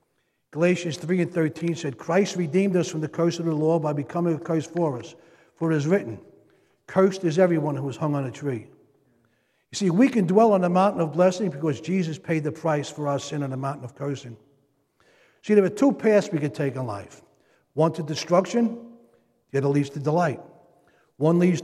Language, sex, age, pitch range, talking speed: English, male, 60-79, 150-180 Hz, 210 wpm